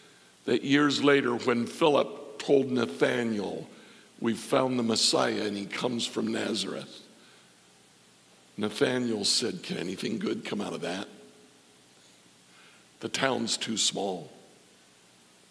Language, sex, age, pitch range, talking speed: English, male, 60-79, 115-150 Hz, 110 wpm